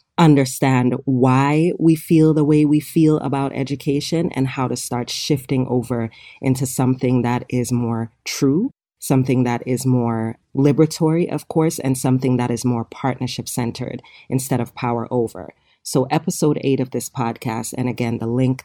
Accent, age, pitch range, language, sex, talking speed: American, 30-49, 125-145 Hz, English, female, 160 wpm